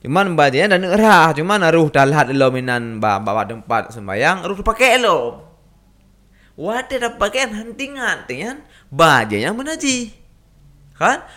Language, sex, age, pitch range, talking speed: Indonesian, male, 20-39, 125-205 Hz, 120 wpm